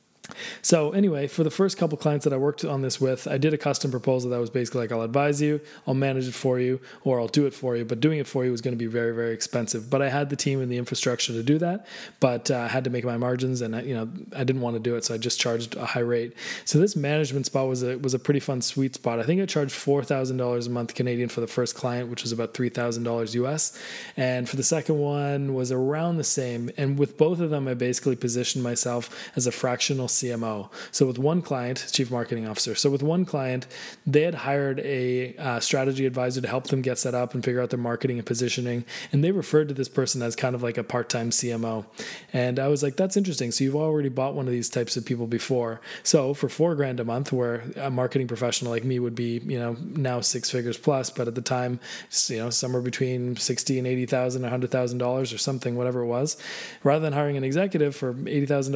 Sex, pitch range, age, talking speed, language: male, 120-140 Hz, 20-39, 250 wpm, English